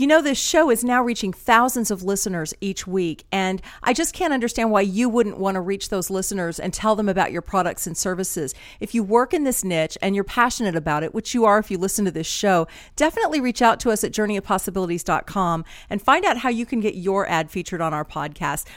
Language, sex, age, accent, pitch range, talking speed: English, female, 50-69, American, 180-235 Hz, 235 wpm